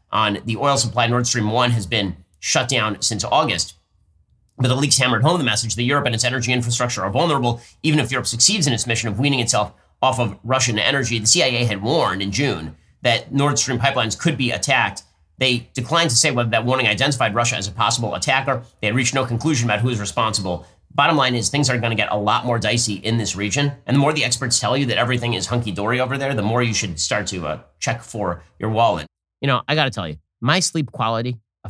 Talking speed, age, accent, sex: 240 wpm, 30-49, American, male